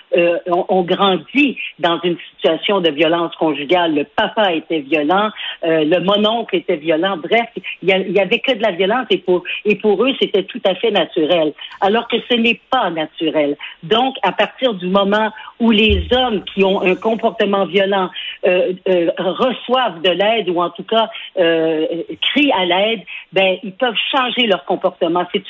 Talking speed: 180 wpm